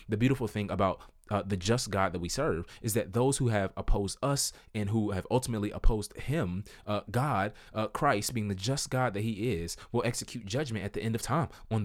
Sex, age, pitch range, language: male, 20-39, 95-120 Hz, English